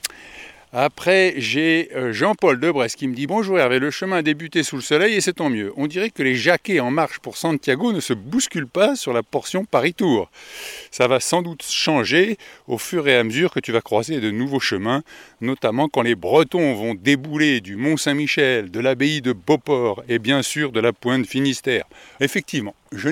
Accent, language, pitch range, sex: French, French, 125-180 Hz, male